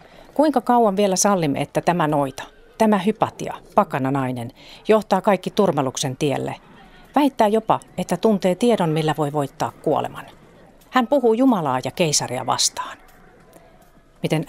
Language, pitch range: Finnish, 145-220 Hz